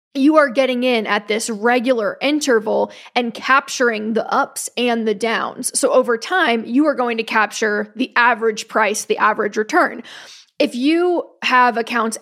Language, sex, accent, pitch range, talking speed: English, female, American, 225-270 Hz, 160 wpm